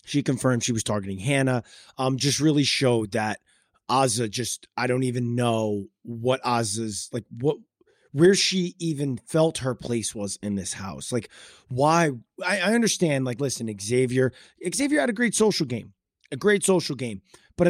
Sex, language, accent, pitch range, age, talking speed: male, English, American, 125-165 Hz, 30-49, 170 wpm